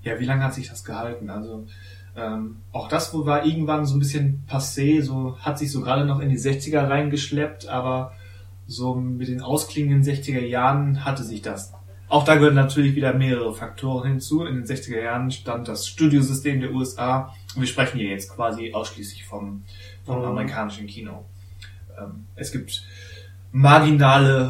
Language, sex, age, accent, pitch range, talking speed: German, male, 20-39, German, 105-130 Hz, 170 wpm